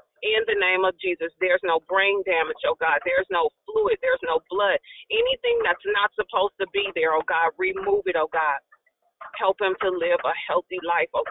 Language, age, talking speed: English, 40-59, 200 wpm